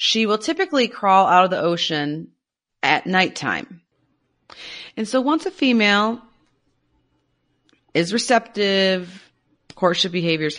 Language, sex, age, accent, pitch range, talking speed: English, female, 30-49, American, 145-205 Hz, 110 wpm